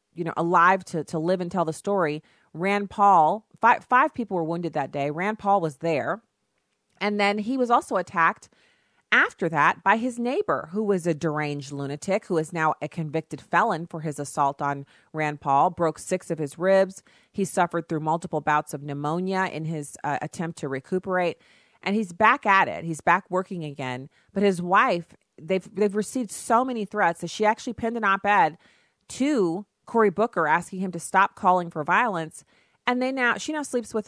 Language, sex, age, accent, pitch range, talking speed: English, female, 40-59, American, 160-210 Hz, 195 wpm